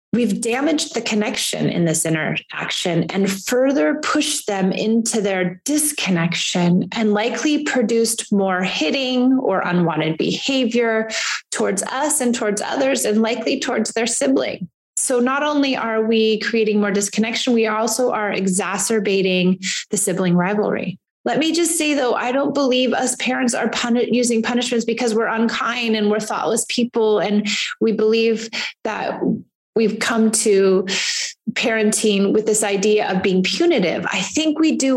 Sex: female